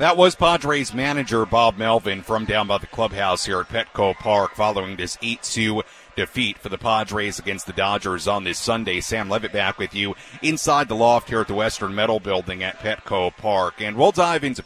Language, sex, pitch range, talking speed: English, male, 100-140 Hz, 200 wpm